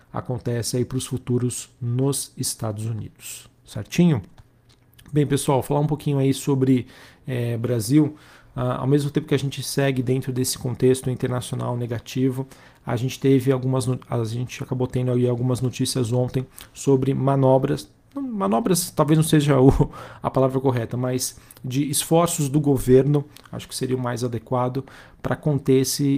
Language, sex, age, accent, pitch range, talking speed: Portuguese, male, 40-59, Brazilian, 125-140 Hz, 155 wpm